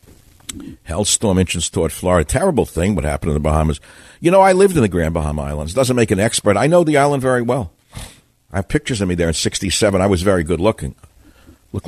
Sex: male